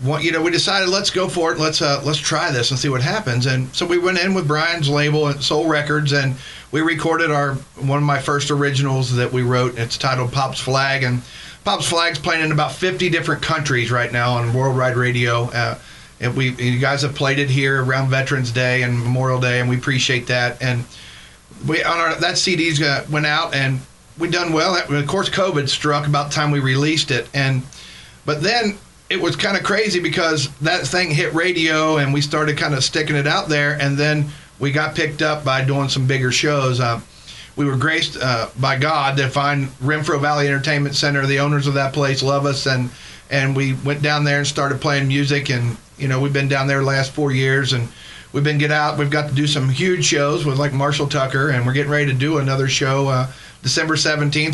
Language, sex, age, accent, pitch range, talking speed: English, male, 50-69, American, 130-155 Hz, 225 wpm